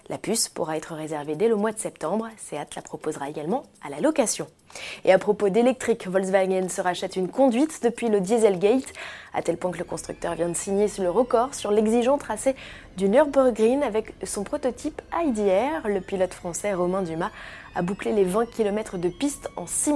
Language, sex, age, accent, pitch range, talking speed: French, female, 20-39, French, 180-240 Hz, 190 wpm